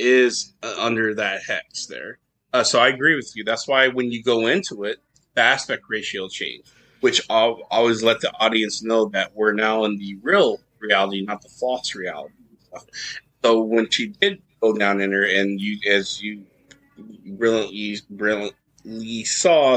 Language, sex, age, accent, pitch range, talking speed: English, male, 30-49, American, 110-135 Hz, 170 wpm